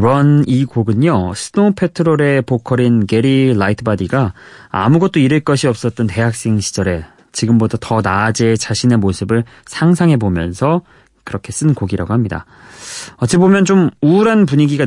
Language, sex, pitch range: Korean, male, 105-155 Hz